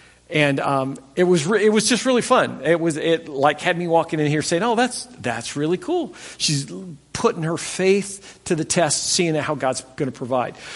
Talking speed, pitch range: 210 wpm, 140-180 Hz